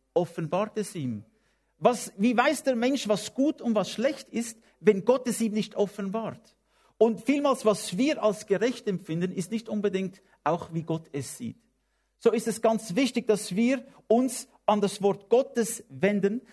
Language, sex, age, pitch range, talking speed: English, male, 50-69, 180-230 Hz, 175 wpm